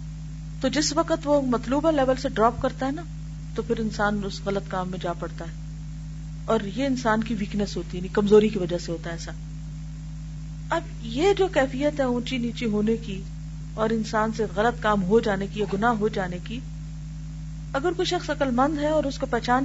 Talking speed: 205 wpm